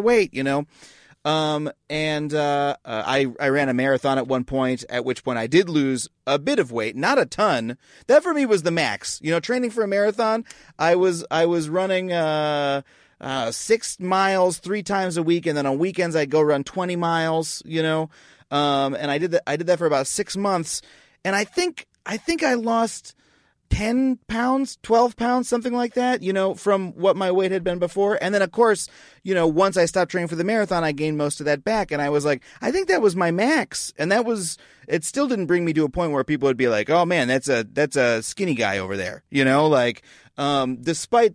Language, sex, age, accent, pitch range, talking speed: English, male, 30-49, American, 145-195 Hz, 230 wpm